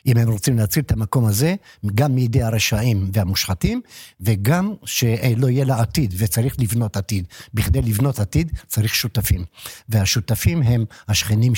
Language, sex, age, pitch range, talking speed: Hebrew, male, 60-79, 105-130 Hz, 140 wpm